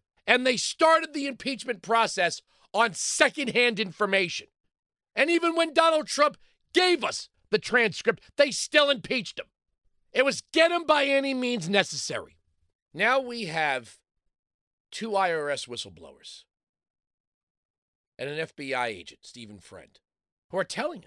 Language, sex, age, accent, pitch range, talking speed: English, male, 40-59, American, 155-245 Hz, 130 wpm